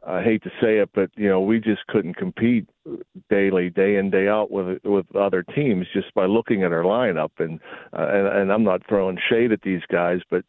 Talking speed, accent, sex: 225 wpm, American, male